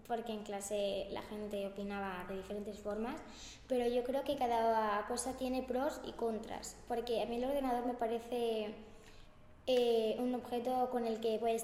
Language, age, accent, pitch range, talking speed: Spanish, 20-39, Spanish, 220-255 Hz, 170 wpm